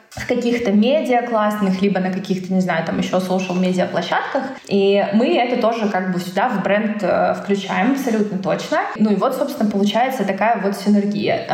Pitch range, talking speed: 185-225 Hz, 170 wpm